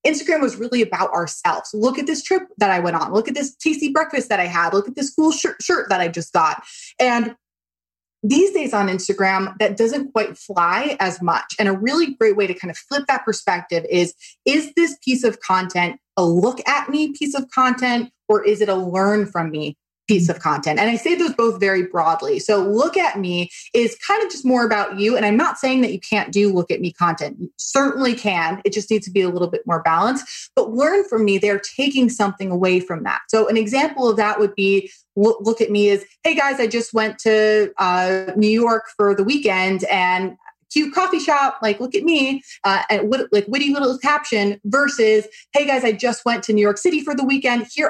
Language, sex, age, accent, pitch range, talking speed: English, female, 20-39, American, 195-270 Hz, 225 wpm